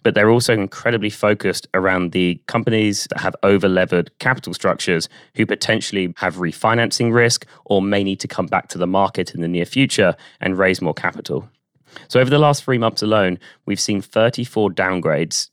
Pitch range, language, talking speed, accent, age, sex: 90-110 Hz, English, 180 wpm, British, 20-39, male